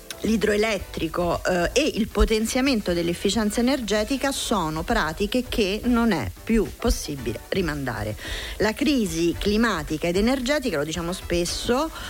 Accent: native